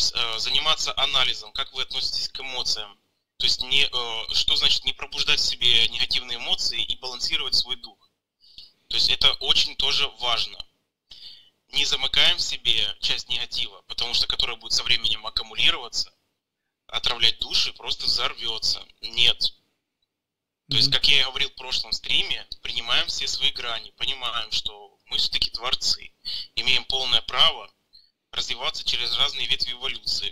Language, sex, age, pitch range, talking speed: Russian, male, 20-39, 110-135 Hz, 145 wpm